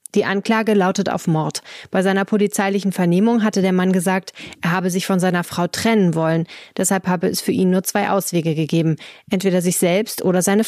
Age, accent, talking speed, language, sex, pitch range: 30-49, German, 195 wpm, German, female, 170-200 Hz